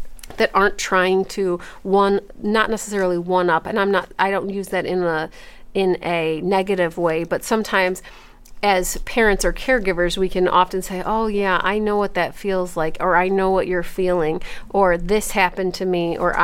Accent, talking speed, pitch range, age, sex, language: American, 190 wpm, 180-205 Hz, 40-59, female, English